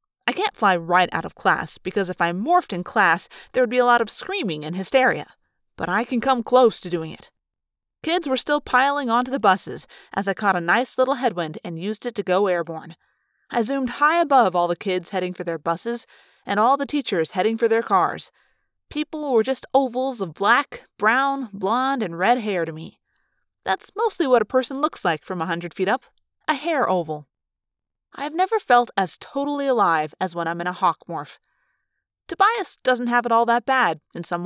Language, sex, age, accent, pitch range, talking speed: English, female, 30-49, American, 185-270 Hz, 210 wpm